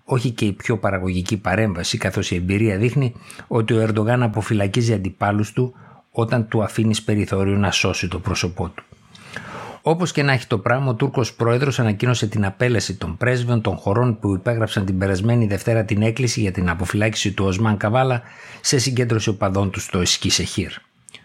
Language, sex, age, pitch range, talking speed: Greek, male, 60-79, 100-120 Hz, 170 wpm